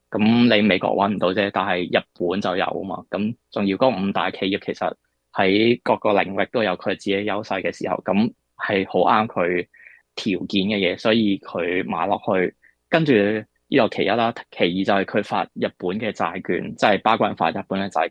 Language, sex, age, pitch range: Chinese, male, 20-39, 95-110 Hz